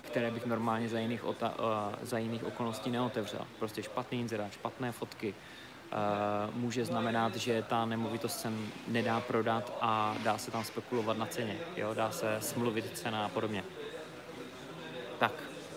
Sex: male